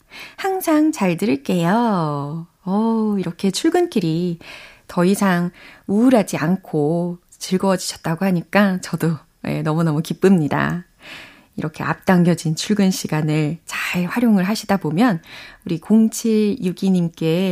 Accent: native